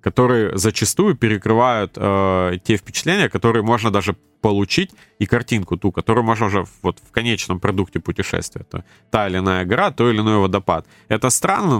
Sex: male